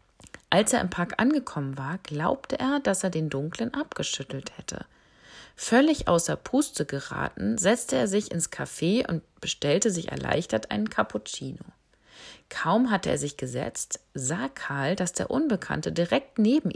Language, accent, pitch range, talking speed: German, German, 155-225 Hz, 145 wpm